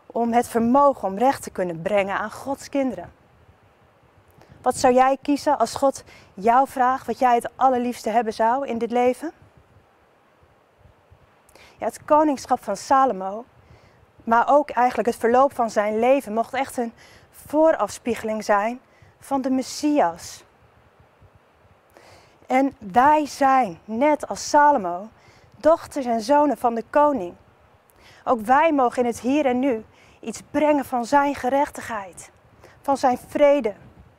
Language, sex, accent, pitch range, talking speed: Dutch, female, Dutch, 220-275 Hz, 135 wpm